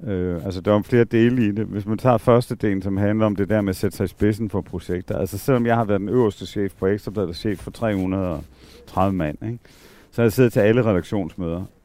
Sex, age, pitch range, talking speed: male, 50-69, 90-110 Hz, 255 wpm